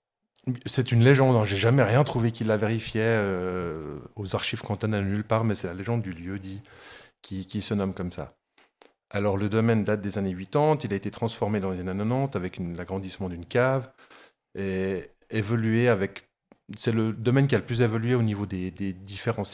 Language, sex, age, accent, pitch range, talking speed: French, male, 40-59, French, 95-115 Hz, 200 wpm